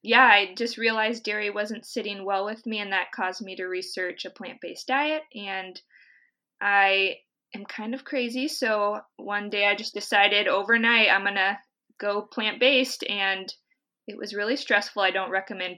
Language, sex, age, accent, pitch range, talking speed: English, female, 20-39, American, 185-235 Hz, 170 wpm